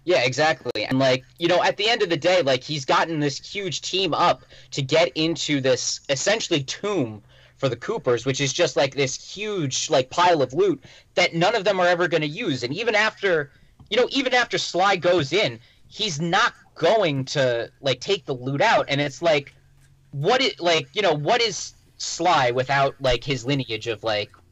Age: 30-49